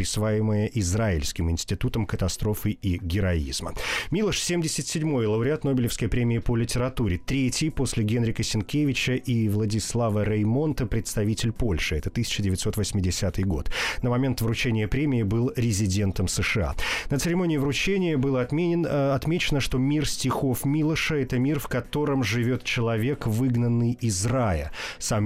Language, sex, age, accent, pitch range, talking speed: Russian, male, 30-49, native, 105-130 Hz, 125 wpm